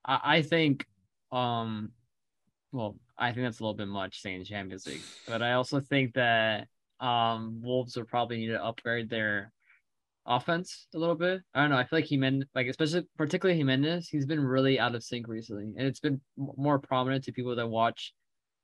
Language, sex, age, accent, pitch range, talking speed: English, male, 20-39, American, 115-135 Hz, 190 wpm